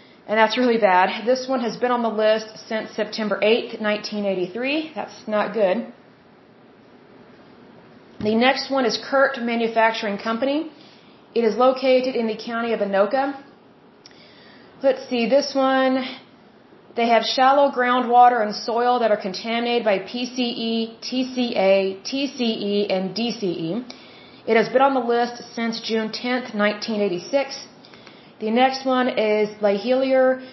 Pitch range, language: 215-255 Hz, English